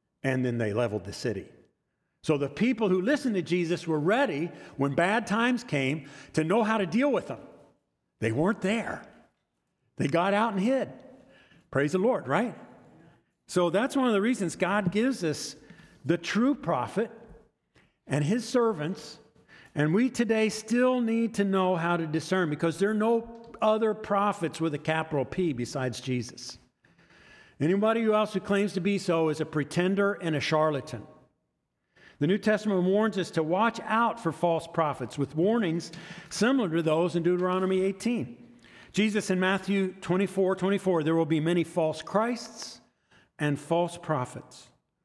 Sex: male